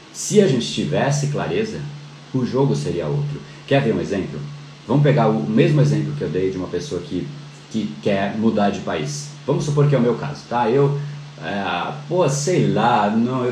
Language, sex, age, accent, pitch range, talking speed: Portuguese, male, 40-59, Brazilian, 90-145 Hz, 195 wpm